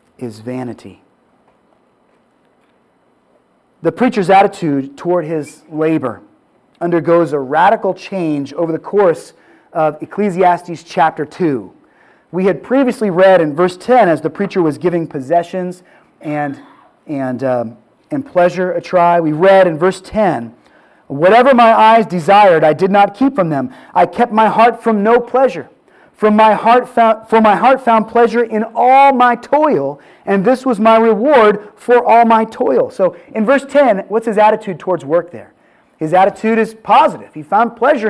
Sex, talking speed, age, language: male, 155 wpm, 30-49, English